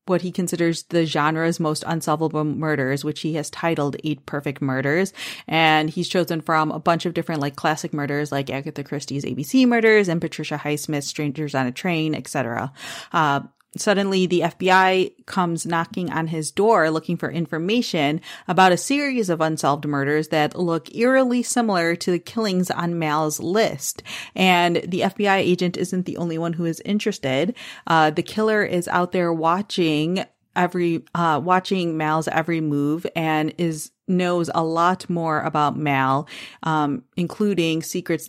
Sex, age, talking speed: female, 30-49, 160 wpm